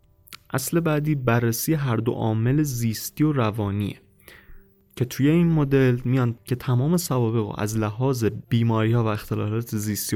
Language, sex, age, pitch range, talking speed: Persian, male, 20-39, 110-130 Hz, 150 wpm